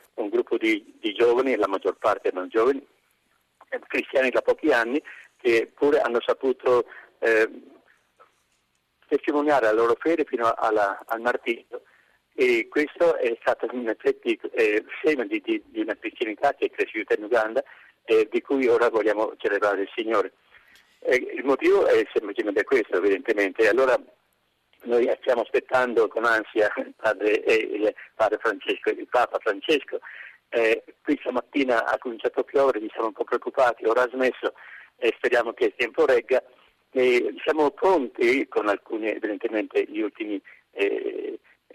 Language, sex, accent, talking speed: Italian, male, native, 150 wpm